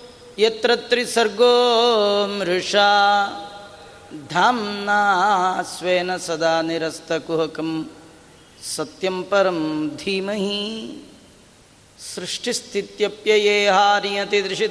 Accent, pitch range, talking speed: native, 180-215 Hz, 50 wpm